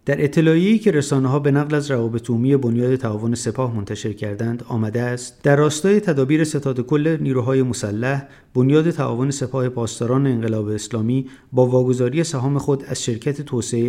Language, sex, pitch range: Persian, male, 115-145 Hz